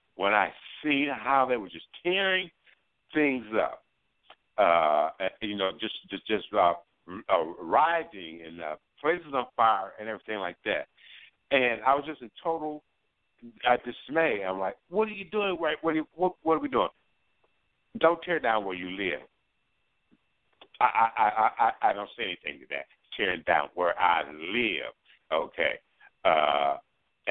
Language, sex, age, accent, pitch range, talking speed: English, male, 60-79, American, 115-170 Hz, 160 wpm